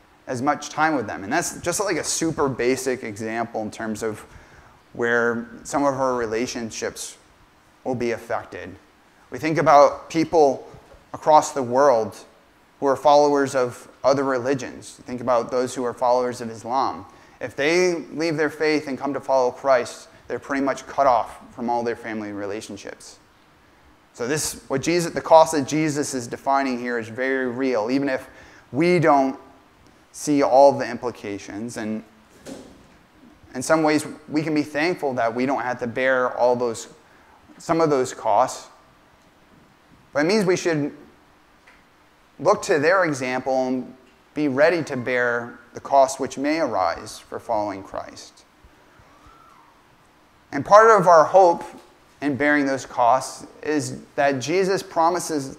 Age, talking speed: 20-39, 155 wpm